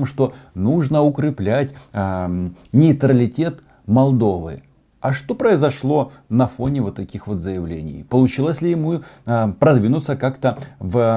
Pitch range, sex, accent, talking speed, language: 95-130 Hz, male, native, 120 wpm, Russian